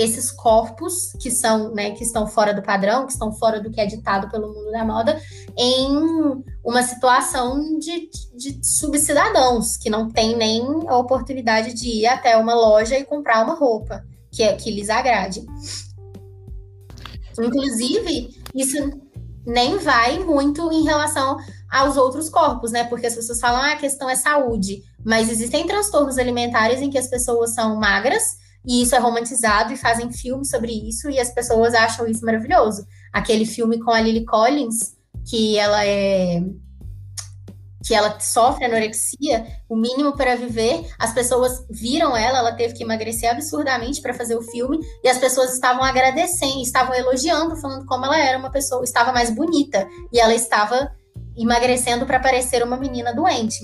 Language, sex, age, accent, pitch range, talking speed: Portuguese, female, 20-39, Brazilian, 220-260 Hz, 165 wpm